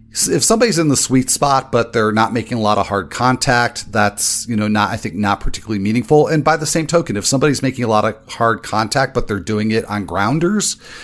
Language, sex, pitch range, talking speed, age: English, male, 105-130 Hz, 235 wpm, 40-59